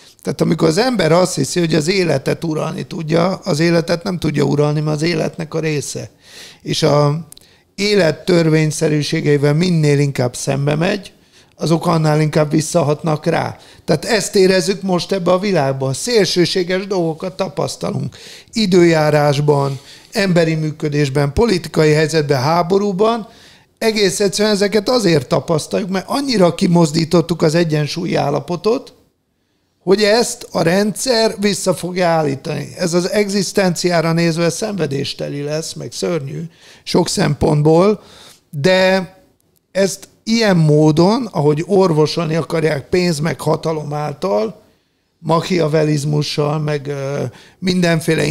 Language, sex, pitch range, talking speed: Hungarian, male, 150-185 Hz, 115 wpm